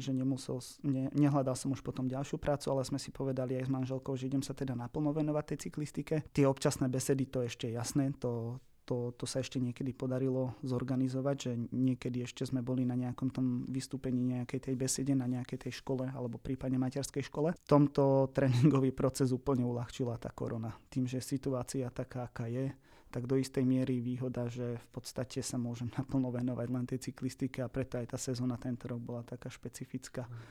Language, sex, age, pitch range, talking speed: Slovak, male, 20-39, 125-140 Hz, 195 wpm